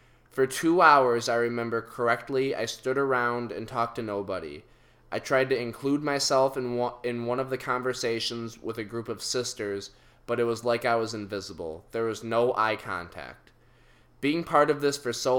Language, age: English, 20-39